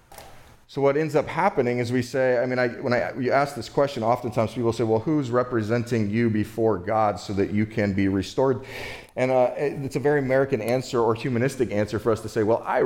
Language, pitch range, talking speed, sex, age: English, 100-135 Hz, 230 wpm, male, 30-49